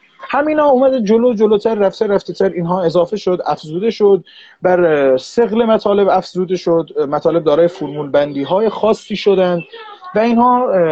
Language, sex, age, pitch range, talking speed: Persian, male, 30-49, 170-220 Hz, 130 wpm